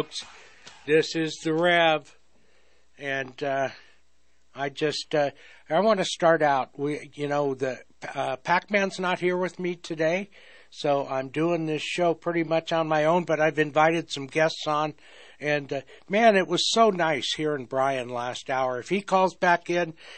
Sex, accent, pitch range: male, American, 140-170 Hz